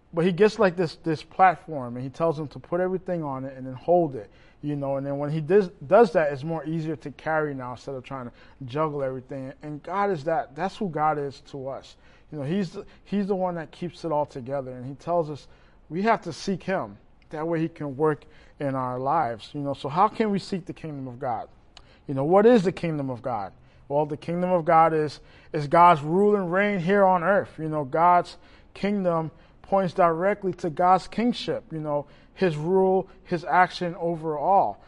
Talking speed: 220 wpm